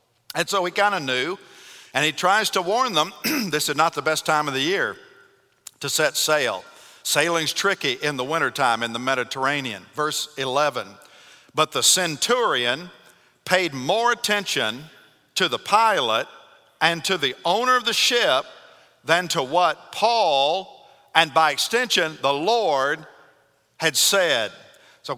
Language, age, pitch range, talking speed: English, 50-69, 150-210 Hz, 150 wpm